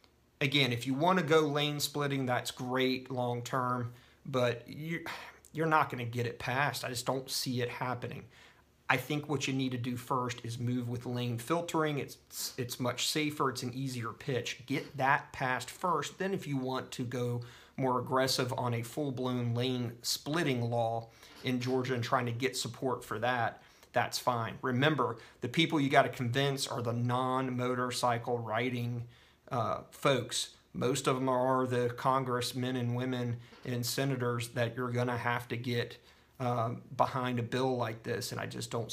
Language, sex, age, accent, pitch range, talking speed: English, male, 40-59, American, 120-135 Hz, 175 wpm